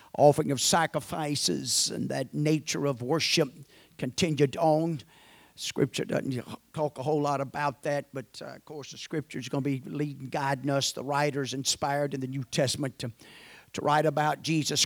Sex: male